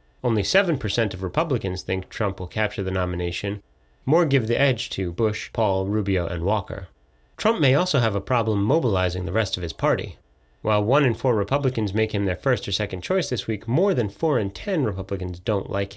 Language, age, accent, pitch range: English, 30-49, American, 95-125 Hz